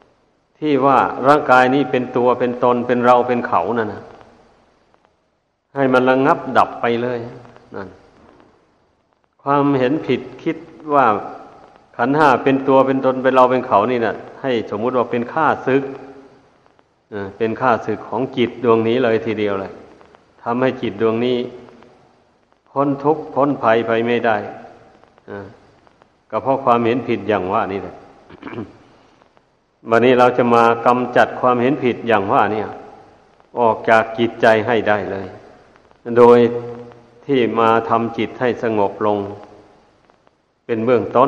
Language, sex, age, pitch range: Thai, male, 60-79, 115-130 Hz